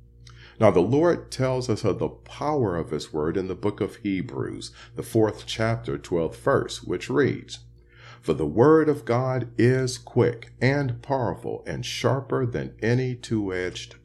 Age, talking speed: 50-69, 160 wpm